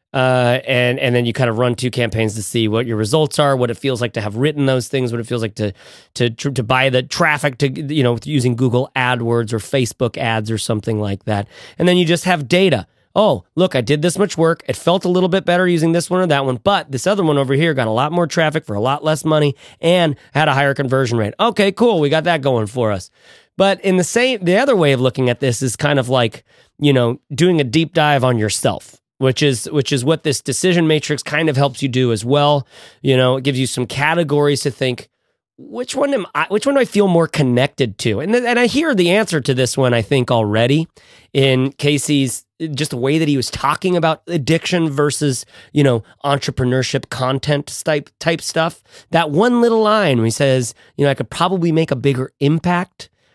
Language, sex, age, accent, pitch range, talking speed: English, male, 30-49, American, 125-165 Hz, 235 wpm